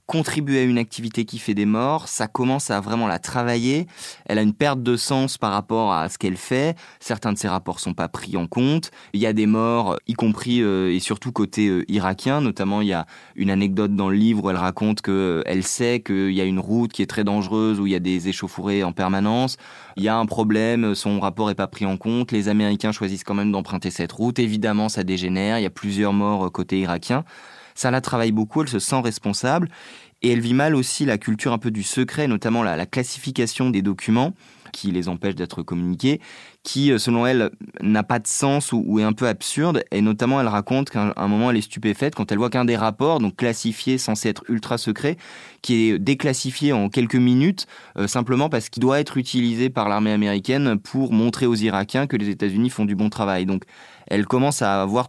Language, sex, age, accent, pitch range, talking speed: French, male, 20-39, French, 100-125 Hz, 225 wpm